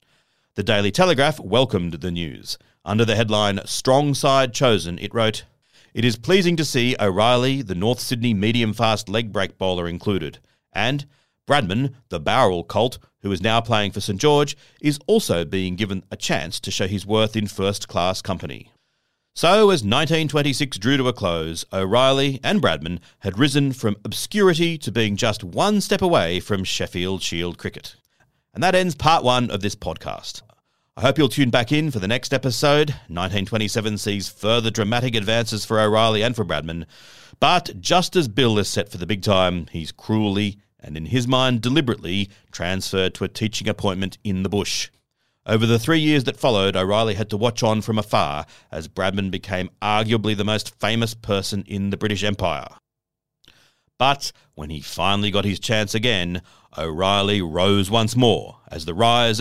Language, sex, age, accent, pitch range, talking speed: English, male, 40-59, Australian, 95-125 Hz, 170 wpm